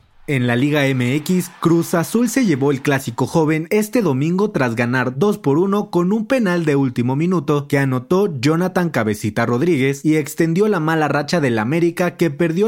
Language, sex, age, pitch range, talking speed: Spanish, male, 30-49, 125-170 Hz, 180 wpm